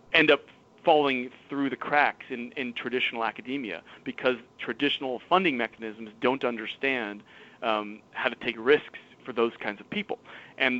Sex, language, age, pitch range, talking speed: male, English, 30-49, 115-130 Hz, 150 wpm